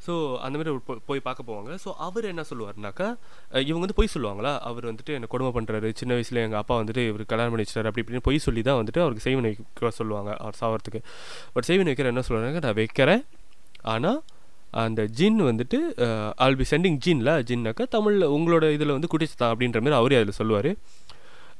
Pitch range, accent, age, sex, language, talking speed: 110-155 Hz, native, 20-39, male, Tamil, 185 wpm